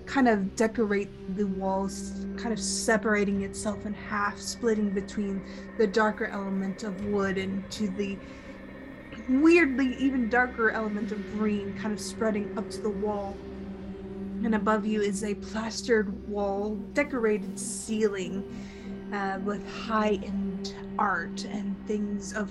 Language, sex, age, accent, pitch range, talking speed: English, female, 20-39, American, 195-220 Hz, 135 wpm